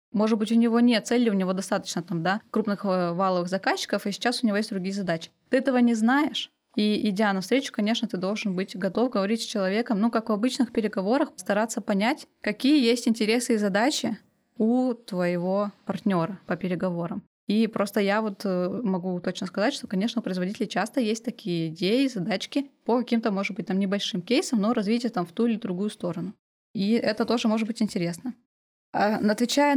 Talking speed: 175 wpm